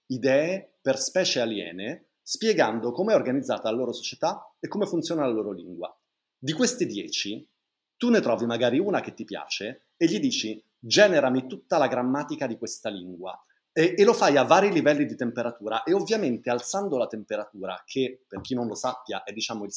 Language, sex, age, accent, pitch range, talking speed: Italian, male, 30-49, native, 105-135 Hz, 185 wpm